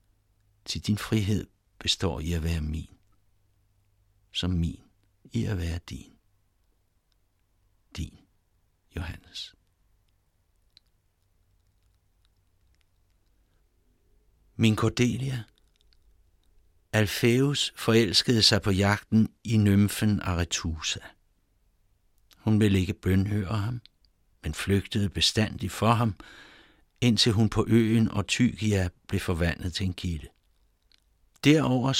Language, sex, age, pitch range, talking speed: Danish, male, 60-79, 85-105 Hz, 90 wpm